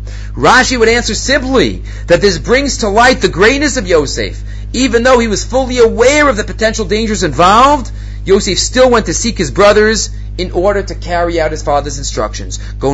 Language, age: English, 30-49